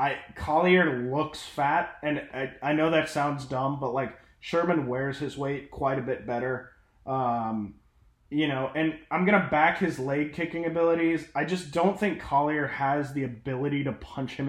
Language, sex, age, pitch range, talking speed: English, male, 20-39, 135-160 Hz, 180 wpm